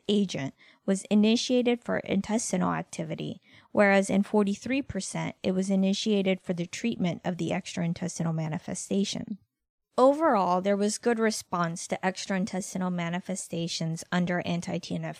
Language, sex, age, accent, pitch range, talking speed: English, female, 20-39, American, 175-215 Hz, 115 wpm